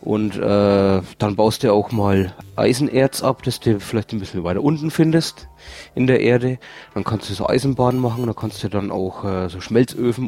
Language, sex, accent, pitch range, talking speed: English, male, German, 105-125 Hz, 200 wpm